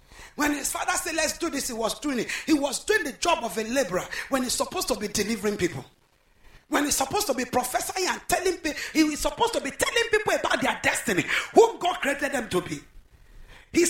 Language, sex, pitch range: English, male, 275-410 Hz